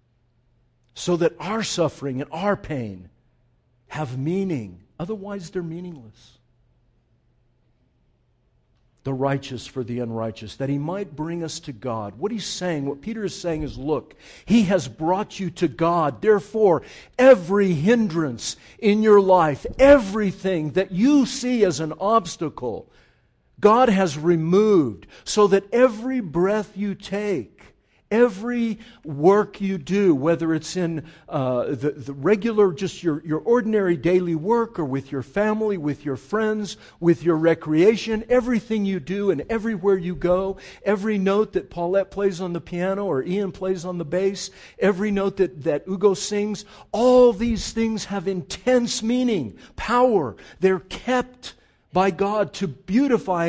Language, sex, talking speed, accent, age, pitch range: English, male, 145 wpm, American, 50-69, 155-210 Hz